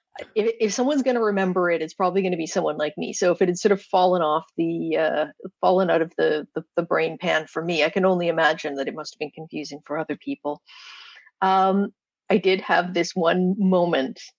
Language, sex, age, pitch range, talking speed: English, female, 50-69, 165-210 Hz, 225 wpm